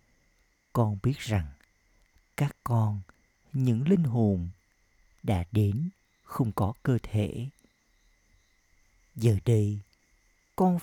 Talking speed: 95 wpm